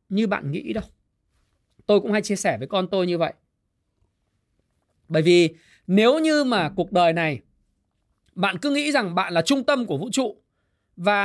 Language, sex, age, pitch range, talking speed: Vietnamese, male, 20-39, 180-275 Hz, 180 wpm